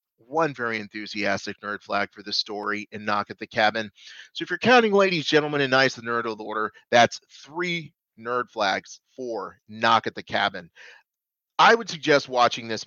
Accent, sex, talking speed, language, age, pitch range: American, male, 185 wpm, English, 30-49, 105-140 Hz